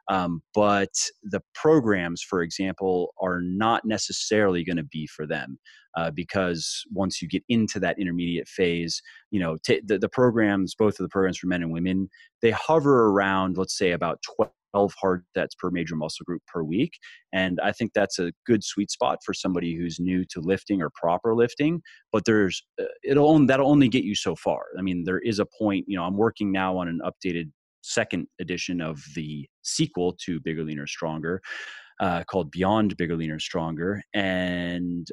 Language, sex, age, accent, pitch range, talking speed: English, male, 30-49, American, 85-100 Hz, 185 wpm